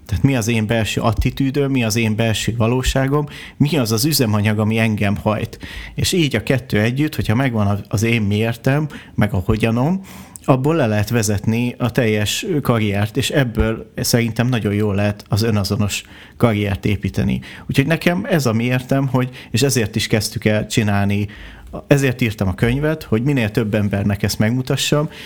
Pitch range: 105-130 Hz